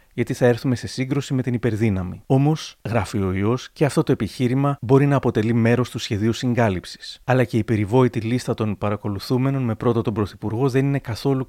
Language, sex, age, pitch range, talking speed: Greek, male, 30-49, 105-130 Hz, 195 wpm